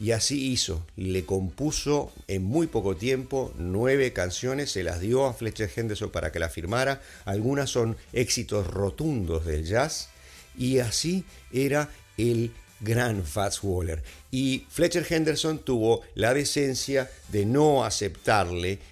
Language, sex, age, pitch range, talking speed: English, male, 50-69, 90-120 Hz, 135 wpm